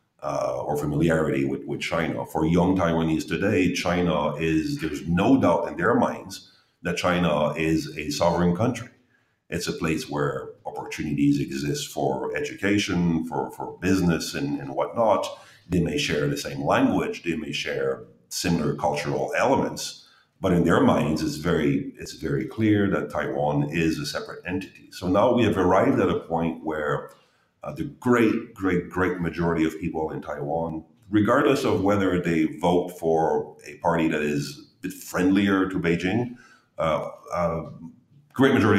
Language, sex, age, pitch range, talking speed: English, male, 50-69, 80-95 Hz, 160 wpm